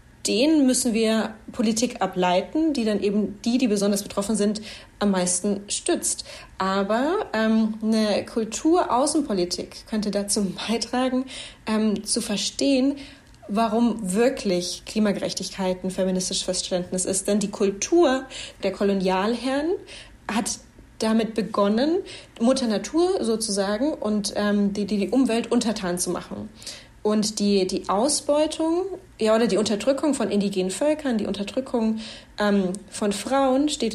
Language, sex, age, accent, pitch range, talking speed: English, female, 30-49, German, 200-260 Hz, 120 wpm